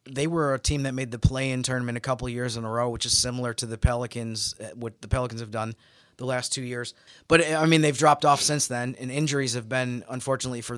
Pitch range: 115-130 Hz